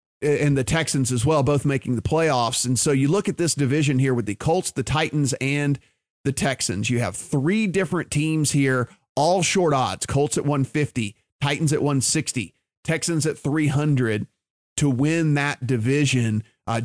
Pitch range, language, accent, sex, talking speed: 125-155 Hz, English, American, male, 170 wpm